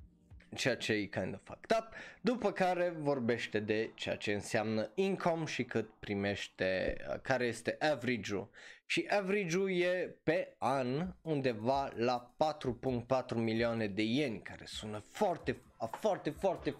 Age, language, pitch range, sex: 20-39, Romanian, 110-155 Hz, male